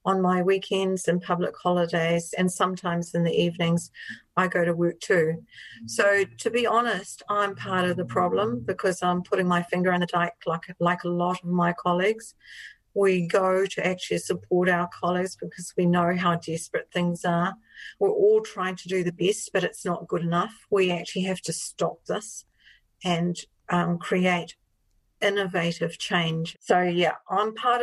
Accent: Australian